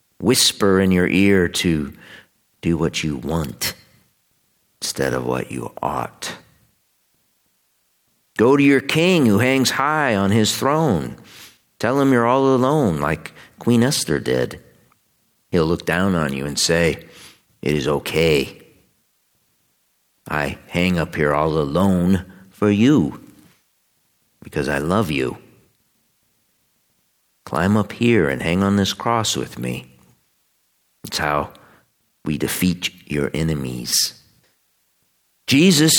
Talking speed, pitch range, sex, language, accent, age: 120 wpm, 80-115 Hz, male, English, American, 50-69